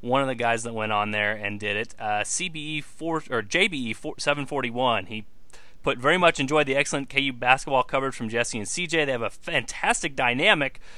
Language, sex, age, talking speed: English, male, 30-49, 185 wpm